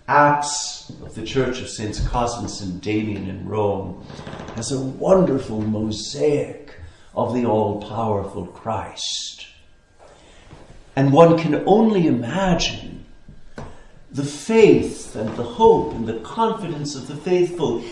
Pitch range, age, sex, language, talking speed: 105-165 Hz, 60-79, male, English, 115 wpm